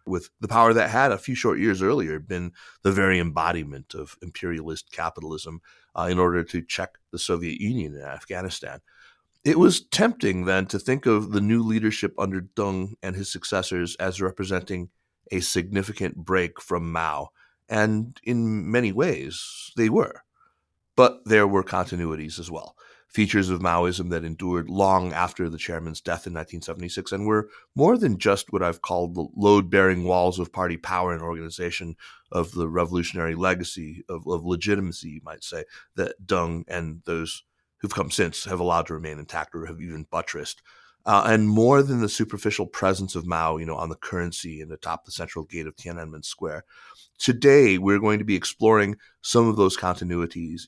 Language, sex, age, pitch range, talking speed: English, male, 30-49, 85-100 Hz, 175 wpm